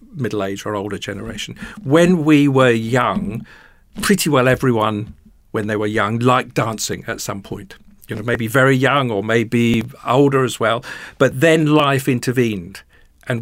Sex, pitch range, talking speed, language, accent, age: male, 115-150 Hz, 160 wpm, English, British, 50-69